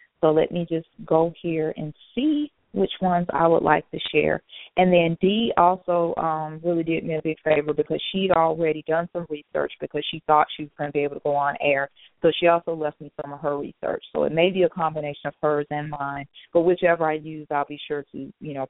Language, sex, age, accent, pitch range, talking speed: English, female, 30-49, American, 150-180 Hz, 240 wpm